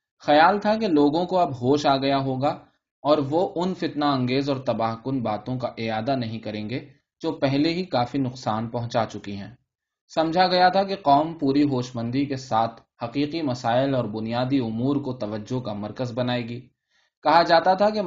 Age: 20-39